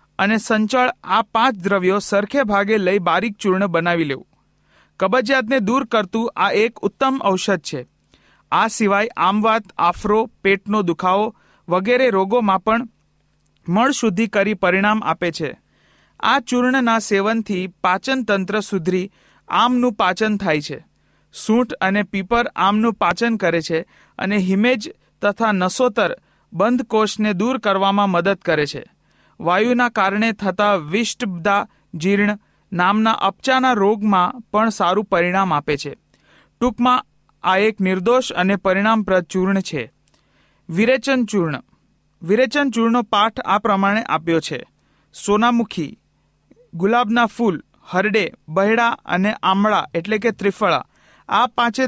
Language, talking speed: Hindi, 90 wpm